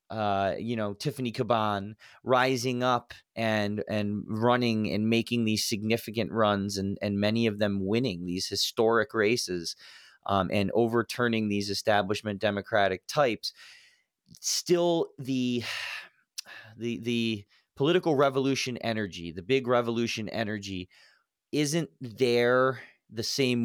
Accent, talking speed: American, 115 wpm